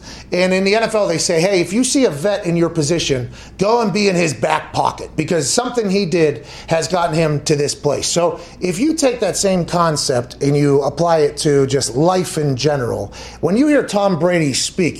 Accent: American